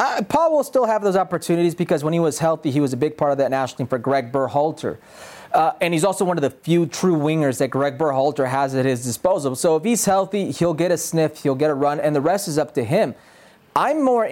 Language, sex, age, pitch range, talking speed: English, male, 30-49, 145-195 Hz, 260 wpm